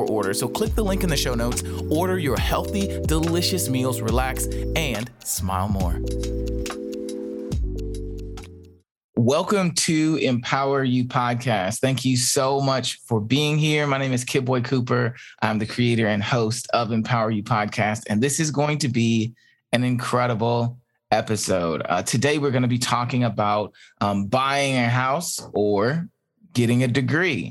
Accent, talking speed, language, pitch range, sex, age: American, 155 wpm, English, 110-135 Hz, male, 20-39